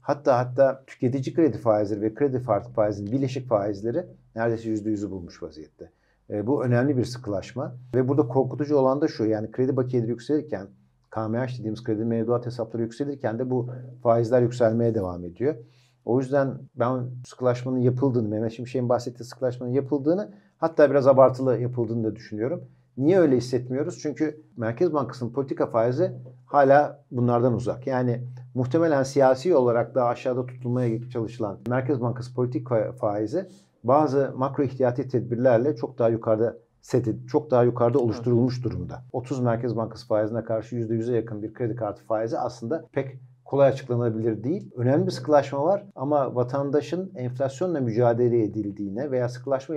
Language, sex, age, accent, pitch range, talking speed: Turkish, male, 50-69, native, 115-135 Hz, 145 wpm